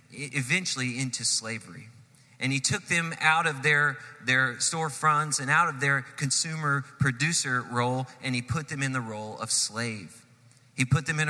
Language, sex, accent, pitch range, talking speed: English, male, American, 125-150 Hz, 170 wpm